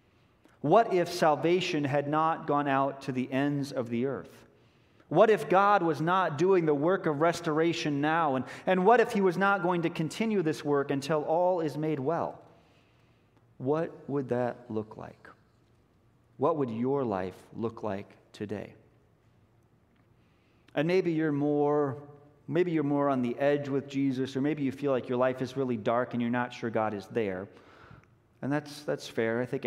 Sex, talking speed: male, 180 wpm